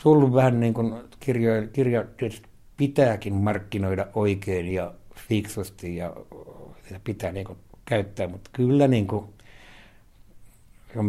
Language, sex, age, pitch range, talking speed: Finnish, male, 60-79, 95-110 Hz, 120 wpm